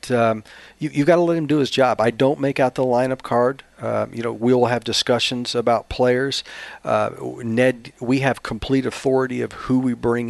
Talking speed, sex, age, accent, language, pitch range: 210 wpm, male, 40-59, American, English, 110-130 Hz